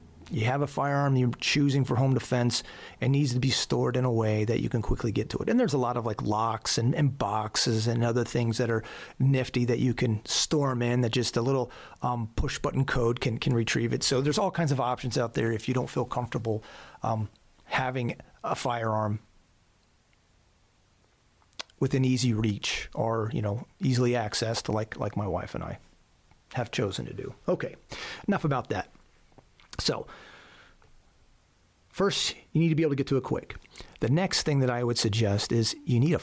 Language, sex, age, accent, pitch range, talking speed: English, male, 30-49, American, 110-130 Hz, 200 wpm